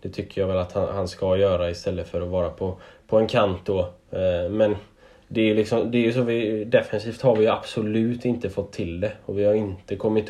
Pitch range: 100-110 Hz